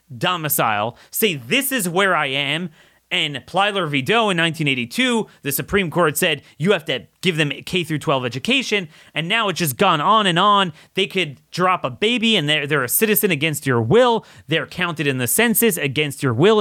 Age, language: 30-49, English